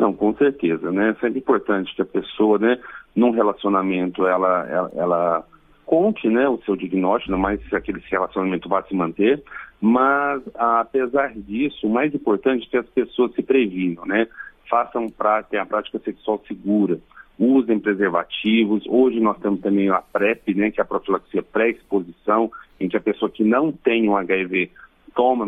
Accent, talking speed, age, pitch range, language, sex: Brazilian, 165 wpm, 40-59, 100-135 Hz, Portuguese, male